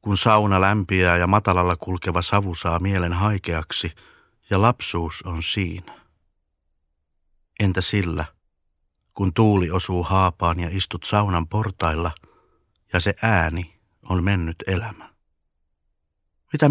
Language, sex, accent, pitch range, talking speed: Finnish, male, native, 80-100 Hz, 110 wpm